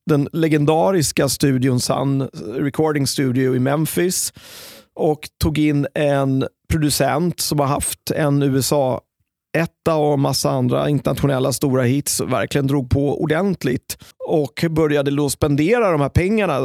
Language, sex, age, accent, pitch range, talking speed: Swedish, male, 30-49, native, 135-160 Hz, 125 wpm